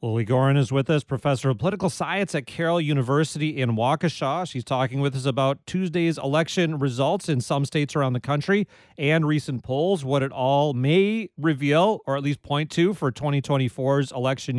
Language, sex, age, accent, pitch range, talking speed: English, male, 30-49, American, 135-170 Hz, 180 wpm